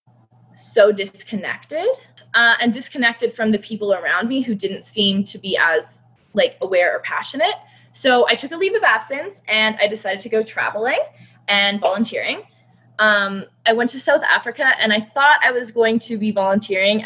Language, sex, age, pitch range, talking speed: English, female, 20-39, 195-240 Hz, 175 wpm